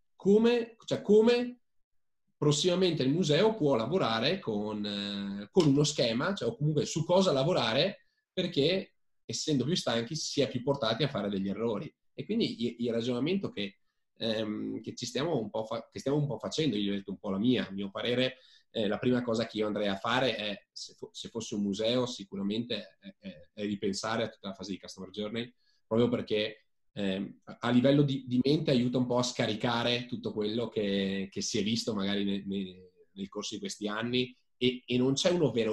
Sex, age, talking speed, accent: male, 20-39, 200 wpm, native